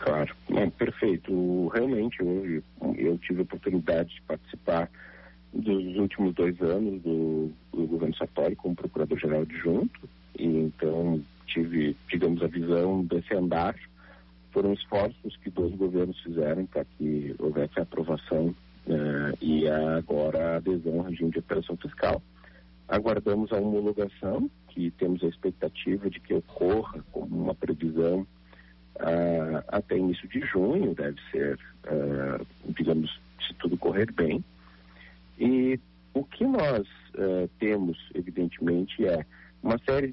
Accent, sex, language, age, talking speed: Brazilian, male, Portuguese, 50-69, 125 wpm